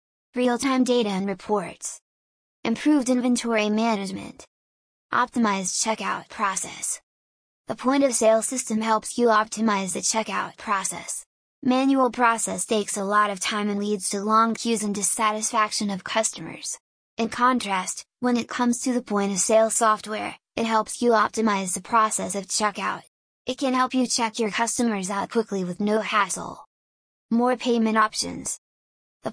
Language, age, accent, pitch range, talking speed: English, 10-29, American, 210-240 Hz, 140 wpm